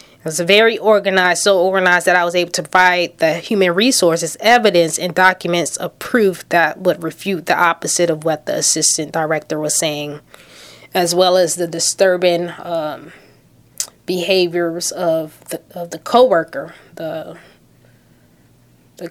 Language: English